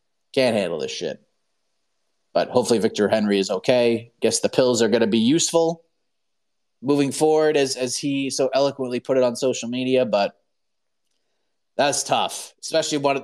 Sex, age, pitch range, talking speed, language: male, 30-49, 130-165 Hz, 160 wpm, English